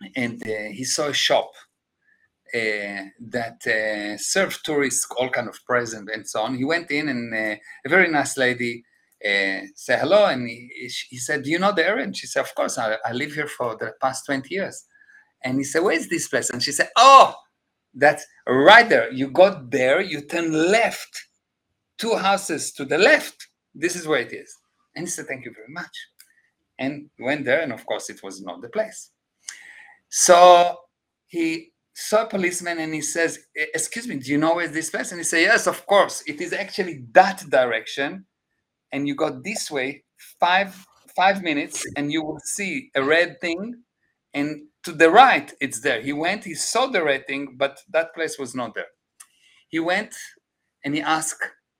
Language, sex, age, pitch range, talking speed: English, male, 50-69, 130-195 Hz, 190 wpm